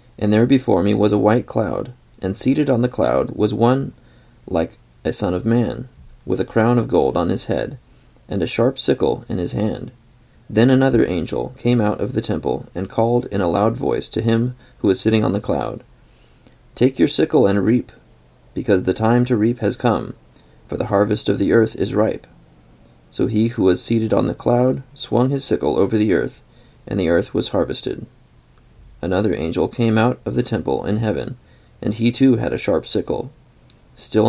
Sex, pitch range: male, 105-125 Hz